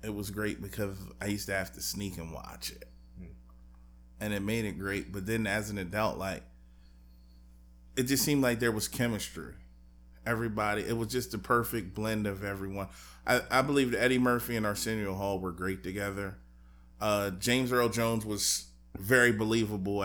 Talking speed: 175 wpm